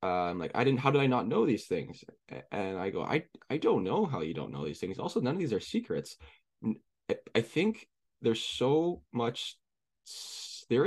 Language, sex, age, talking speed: English, male, 10-29, 205 wpm